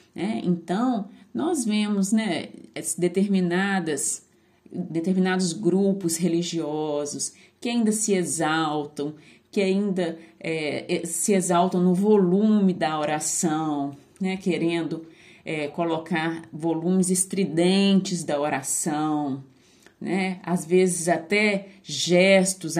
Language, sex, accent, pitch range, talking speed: Portuguese, female, Brazilian, 165-210 Hz, 80 wpm